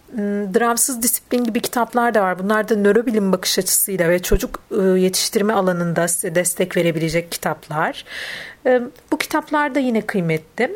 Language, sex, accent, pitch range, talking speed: Turkish, female, native, 180-250 Hz, 135 wpm